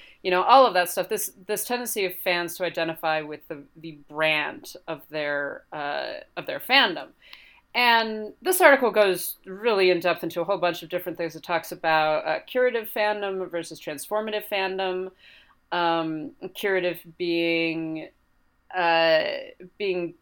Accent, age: American, 30-49